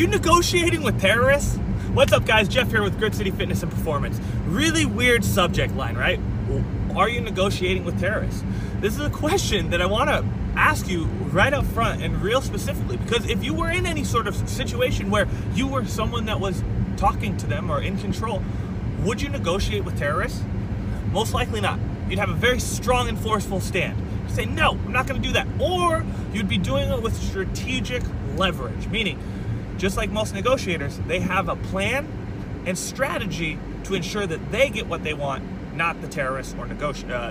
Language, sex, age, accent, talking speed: English, male, 30-49, American, 190 wpm